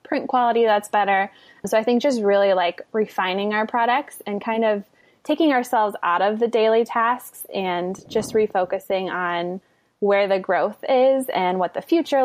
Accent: American